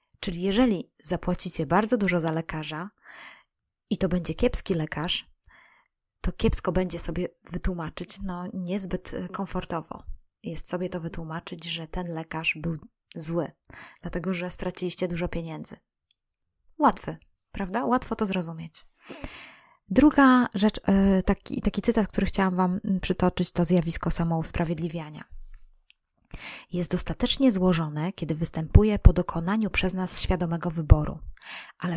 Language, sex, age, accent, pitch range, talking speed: Polish, female, 20-39, native, 165-195 Hz, 120 wpm